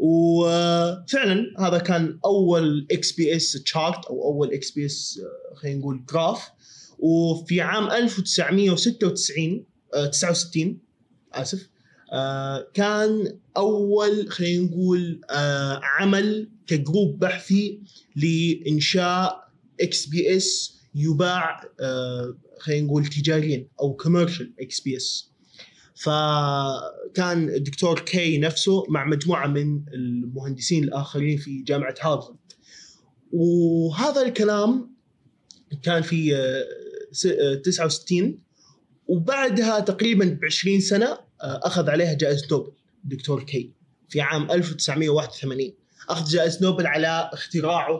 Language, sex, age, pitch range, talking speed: Arabic, male, 20-39, 145-185 Hz, 100 wpm